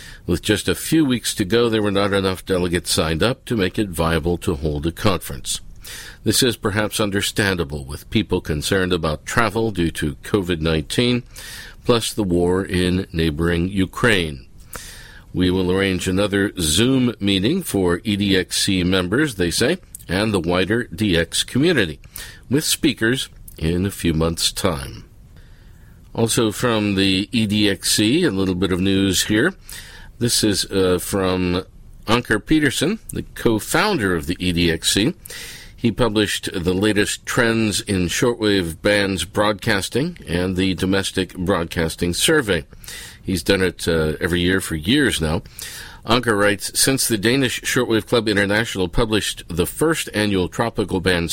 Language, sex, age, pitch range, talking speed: English, male, 50-69, 90-110 Hz, 140 wpm